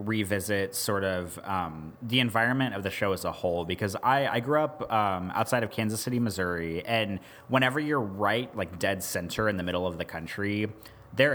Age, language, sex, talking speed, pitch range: 30-49, English, male, 195 wpm, 95-120 Hz